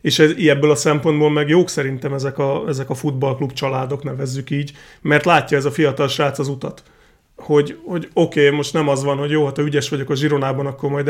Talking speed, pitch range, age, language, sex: 215 wpm, 140-160 Hz, 30-49, Hungarian, male